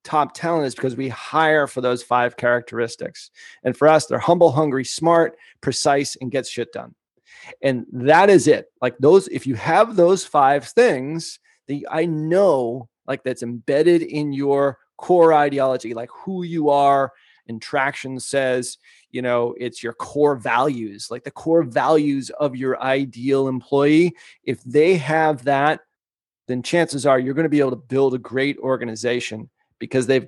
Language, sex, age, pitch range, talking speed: English, male, 30-49, 130-160 Hz, 165 wpm